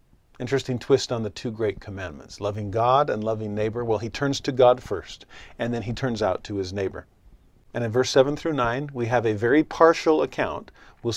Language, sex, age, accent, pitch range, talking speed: English, male, 50-69, American, 105-130 Hz, 210 wpm